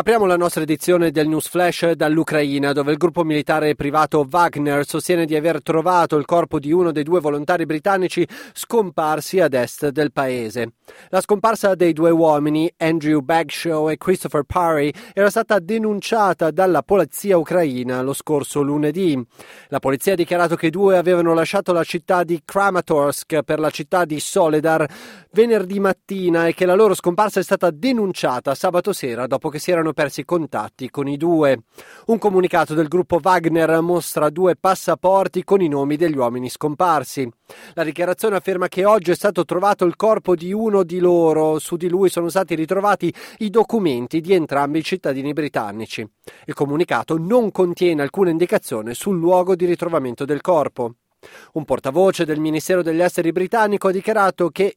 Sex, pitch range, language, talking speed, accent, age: male, 150-185 Hz, Italian, 165 wpm, native, 30-49